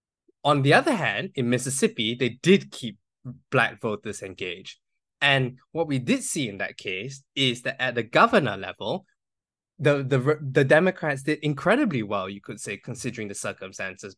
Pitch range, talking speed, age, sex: 120-155 Hz, 165 wpm, 20-39, male